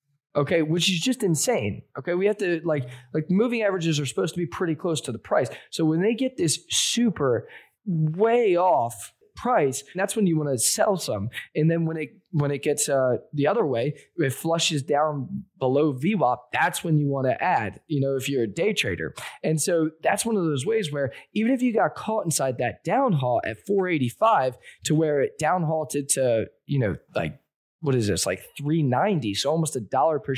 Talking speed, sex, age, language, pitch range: 205 wpm, male, 20-39, English, 130-180 Hz